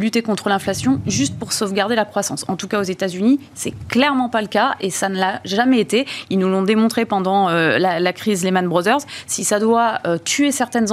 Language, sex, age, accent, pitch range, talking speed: French, female, 20-39, French, 195-245 Hz, 230 wpm